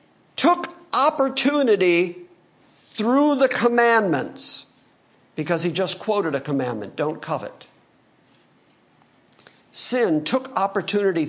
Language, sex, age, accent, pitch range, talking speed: English, male, 50-69, American, 160-260 Hz, 85 wpm